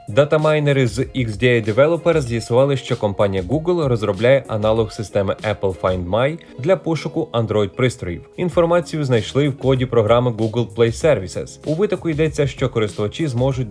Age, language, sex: 20-39, Ukrainian, male